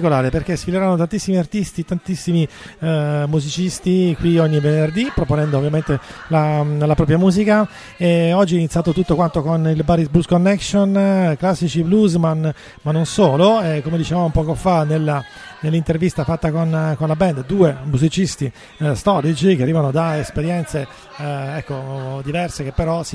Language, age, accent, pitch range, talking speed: Italian, 30-49, native, 145-175 Hz, 150 wpm